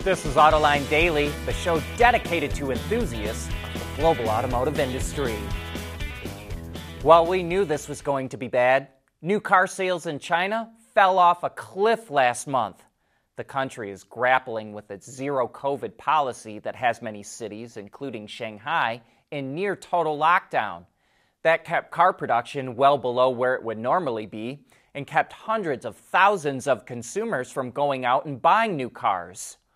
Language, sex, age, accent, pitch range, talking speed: English, male, 30-49, American, 120-185 Hz, 155 wpm